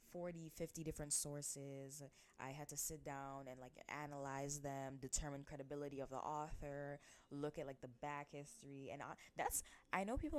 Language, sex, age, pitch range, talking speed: English, female, 20-39, 130-155 Hz, 175 wpm